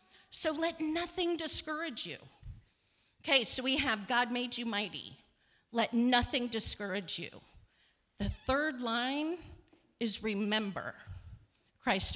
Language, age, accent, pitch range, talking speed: English, 40-59, American, 220-310 Hz, 115 wpm